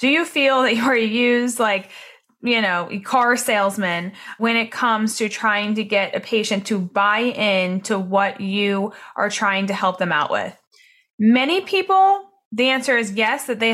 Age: 30-49